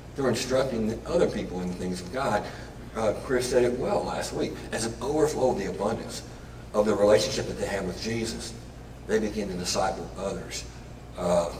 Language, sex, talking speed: English, male, 185 wpm